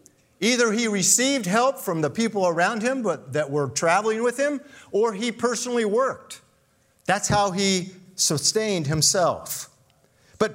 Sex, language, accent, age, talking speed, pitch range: male, English, American, 50-69, 140 wpm, 150-235 Hz